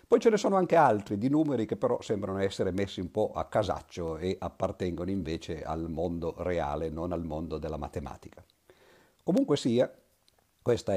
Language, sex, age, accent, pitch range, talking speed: Italian, male, 50-69, native, 85-120 Hz, 170 wpm